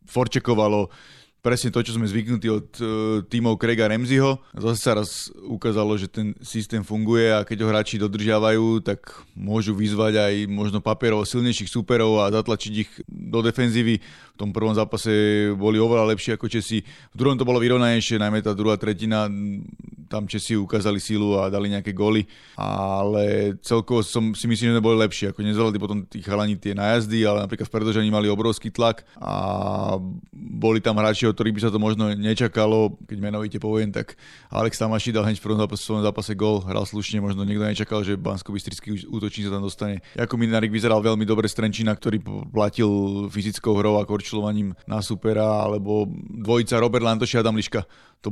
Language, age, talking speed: Slovak, 30-49, 170 wpm